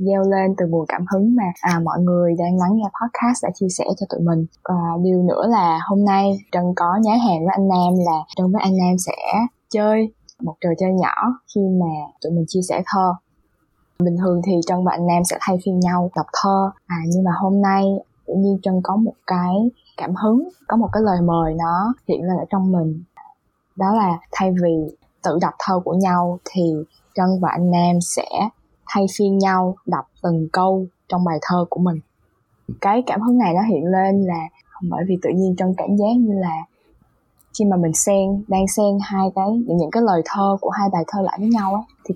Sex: female